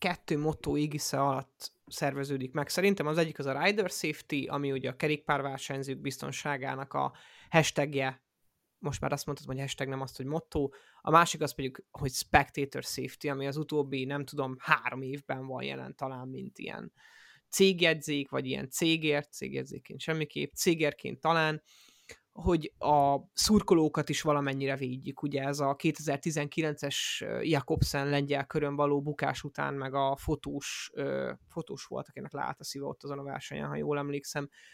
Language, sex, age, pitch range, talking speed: Hungarian, male, 20-39, 140-160 Hz, 150 wpm